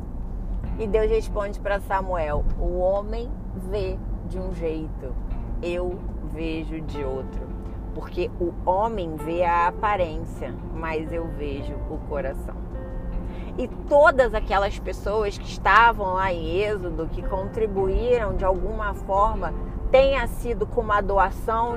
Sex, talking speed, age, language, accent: female, 125 wpm, 20-39, Portuguese, Brazilian